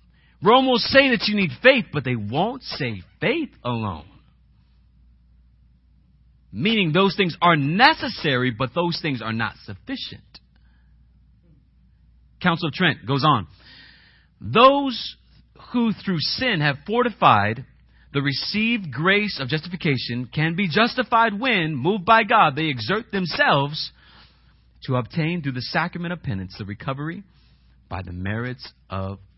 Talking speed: 130 wpm